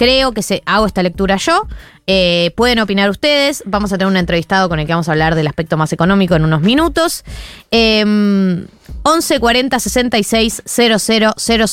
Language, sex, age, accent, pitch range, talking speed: Spanish, female, 20-39, Argentinian, 185-245 Hz, 165 wpm